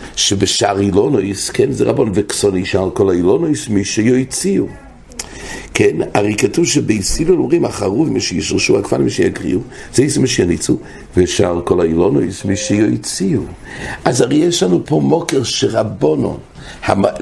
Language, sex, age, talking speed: English, male, 60-79, 125 wpm